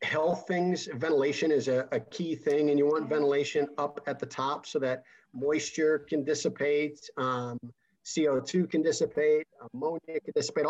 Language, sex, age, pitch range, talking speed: English, male, 50-69, 130-160 Hz, 155 wpm